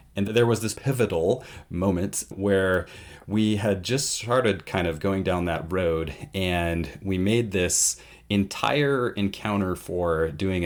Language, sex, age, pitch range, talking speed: English, male, 30-49, 85-105 Hz, 140 wpm